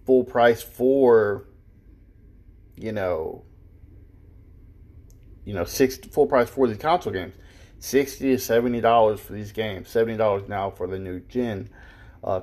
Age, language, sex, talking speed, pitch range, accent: 20-39, English, male, 135 wpm, 95-120 Hz, American